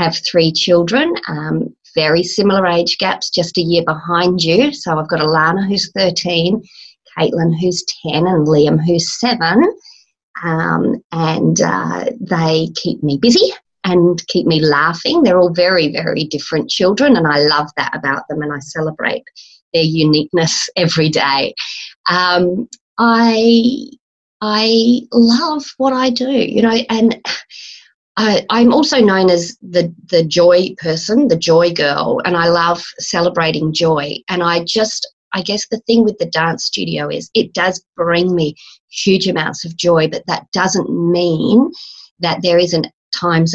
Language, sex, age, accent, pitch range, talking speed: English, female, 30-49, Australian, 160-210 Hz, 150 wpm